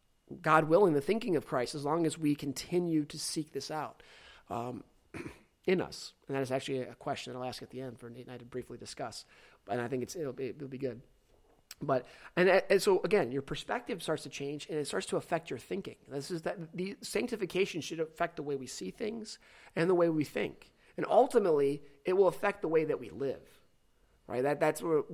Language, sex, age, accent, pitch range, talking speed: English, male, 30-49, American, 140-180 Hz, 225 wpm